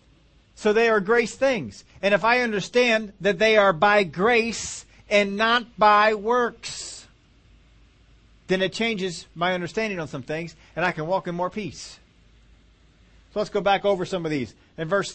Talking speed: 170 wpm